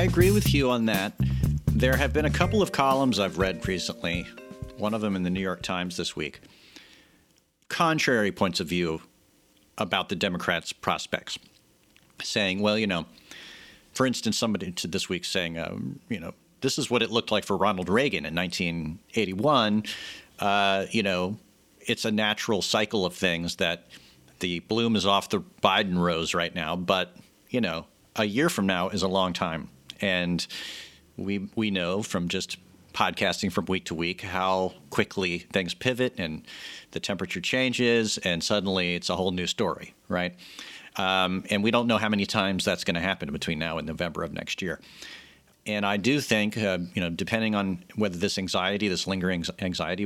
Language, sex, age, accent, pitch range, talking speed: English, male, 50-69, American, 90-105 Hz, 180 wpm